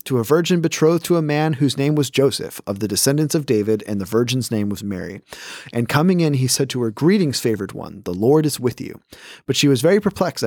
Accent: American